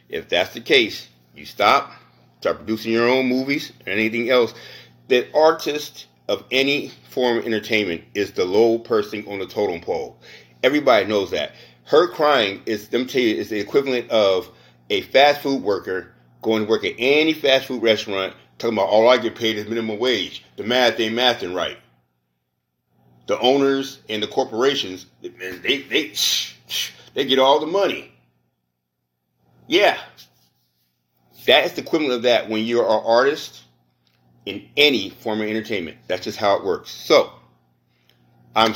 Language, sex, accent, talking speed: English, male, American, 165 wpm